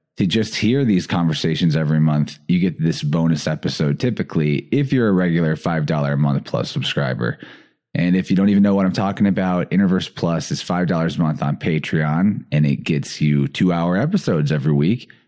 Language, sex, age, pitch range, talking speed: English, male, 30-49, 80-110 Hz, 195 wpm